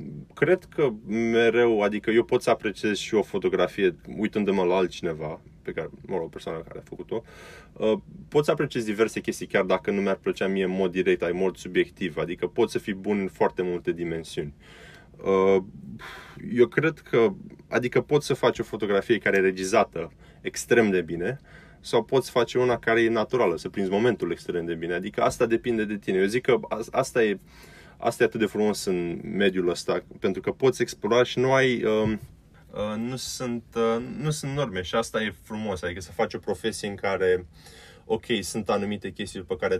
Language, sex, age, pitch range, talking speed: Romanian, male, 20-39, 95-115 Hz, 190 wpm